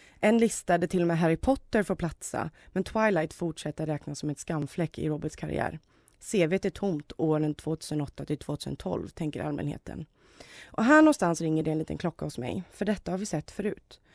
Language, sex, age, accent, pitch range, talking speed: Swedish, female, 30-49, native, 155-195 Hz, 180 wpm